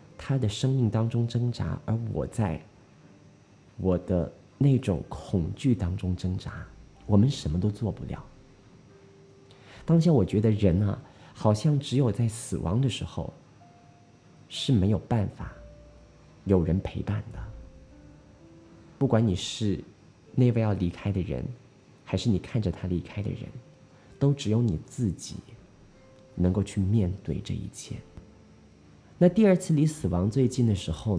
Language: Chinese